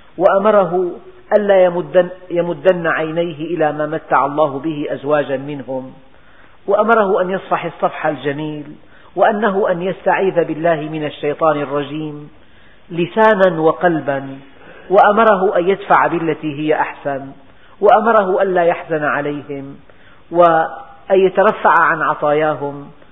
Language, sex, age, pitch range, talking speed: Arabic, female, 50-69, 150-185 Hz, 105 wpm